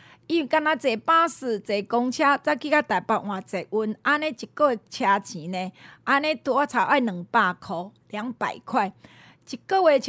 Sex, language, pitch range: female, Chinese, 215-300 Hz